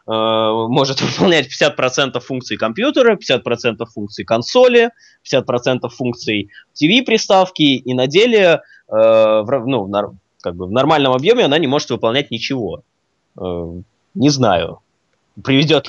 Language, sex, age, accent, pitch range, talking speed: Russian, male, 20-39, native, 110-145 Hz, 100 wpm